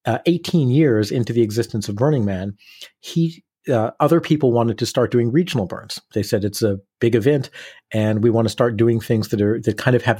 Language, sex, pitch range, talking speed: English, male, 105-130 Hz, 225 wpm